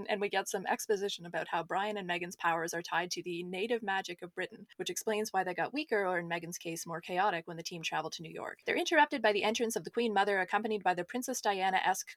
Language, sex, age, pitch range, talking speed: English, female, 20-39, 180-225 Hz, 255 wpm